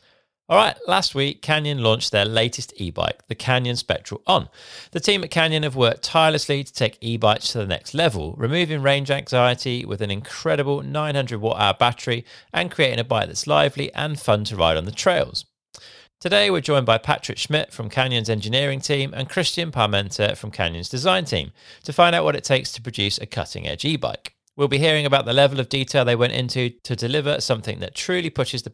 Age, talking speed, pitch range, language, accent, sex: 40-59, 205 wpm, 110-145 Hz, English, British, male